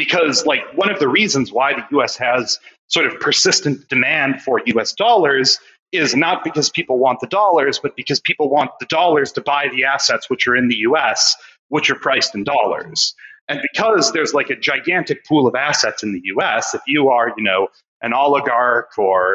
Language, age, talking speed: English, 30-49, 200 wpm